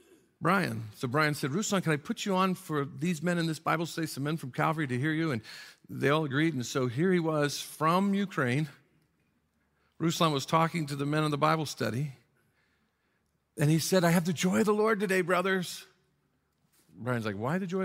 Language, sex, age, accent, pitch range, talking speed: English, male, 50-69, American, 135-170 Hz, 210 wpm